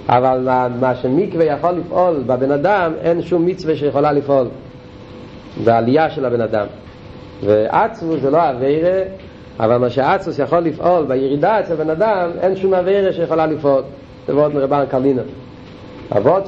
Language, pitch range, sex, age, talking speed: Hebrew, 135-185 Hz, male, 50-69, 135 wpm